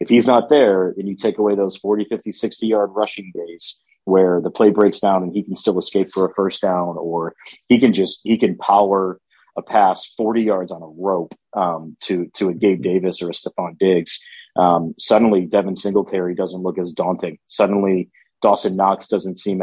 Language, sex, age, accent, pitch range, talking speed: English, male, 30-49, American, 90-110 Hz, 200 wpm